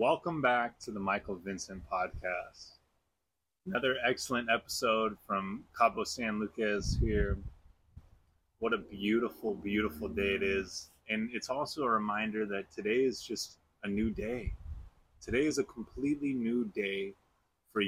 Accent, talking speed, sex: American, 140 wpm, male